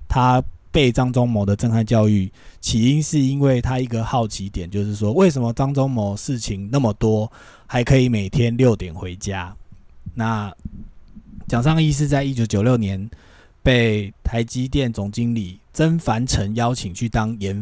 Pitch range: 105-130 Hz